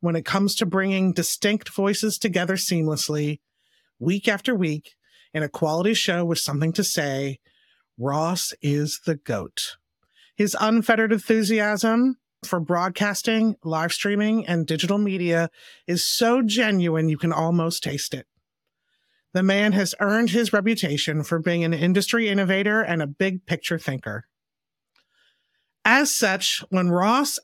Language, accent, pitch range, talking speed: English, American, 160-210 Hz, 135 wpm